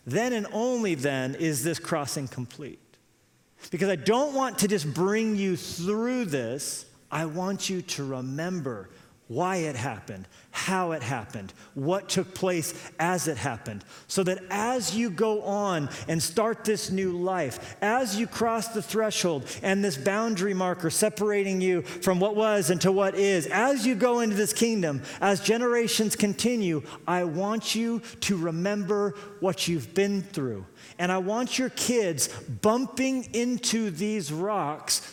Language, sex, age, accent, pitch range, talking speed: English, male, 40-59, American, 170-225 Hz, 155 wpm